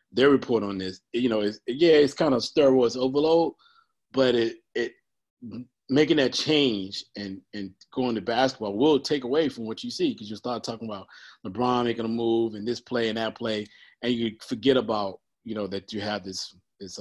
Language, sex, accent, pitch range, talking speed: English, male, American, 100-125 Hz, 200 wpm